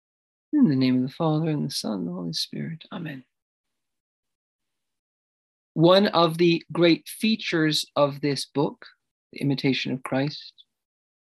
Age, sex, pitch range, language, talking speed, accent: 40-59, male, 140-175 Hz, English, 140 wpm, American